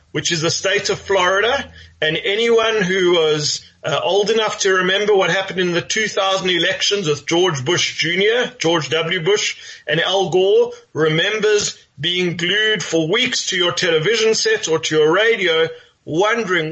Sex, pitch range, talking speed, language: male, 170-240 Hz, 160 wpm, English